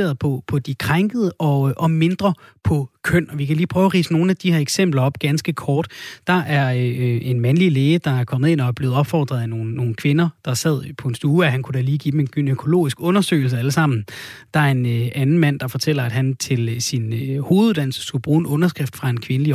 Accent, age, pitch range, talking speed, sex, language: native, 30-49, 125-160 Hz, 245 wpm, male, Danish